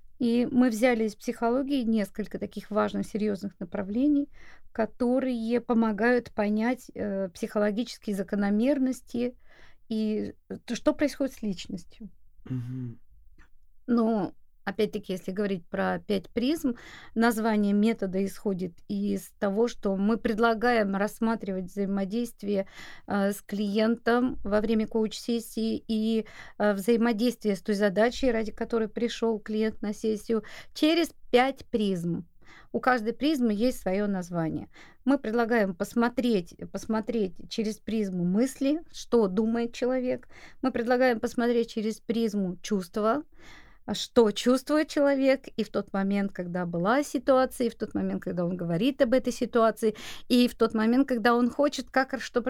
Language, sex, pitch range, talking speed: Russian, female, 200-245 Hz, 130 wpm